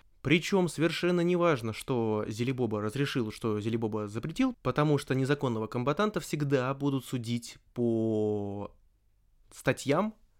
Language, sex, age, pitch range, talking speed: Russian, male, 20-39, 110-150 Hz, 110 wpm